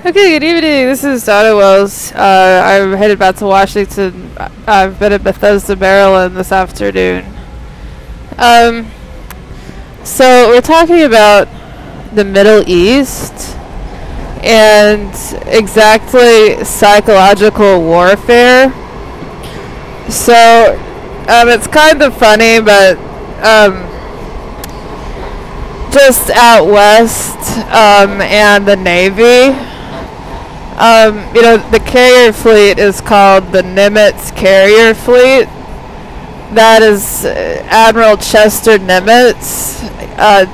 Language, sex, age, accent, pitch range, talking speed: English, female, 20-39, American, 200-235 Hz, 95 wpm